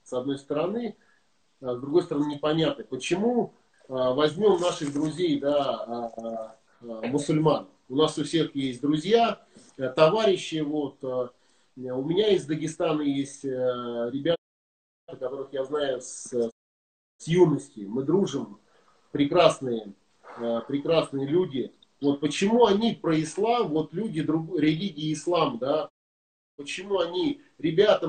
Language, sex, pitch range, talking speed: Russian, male, 130-165 Hz, 110 wpm